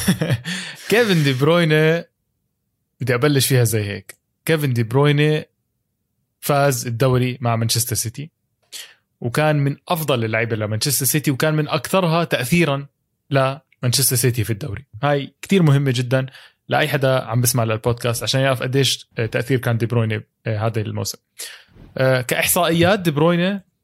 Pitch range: 120-160 Hz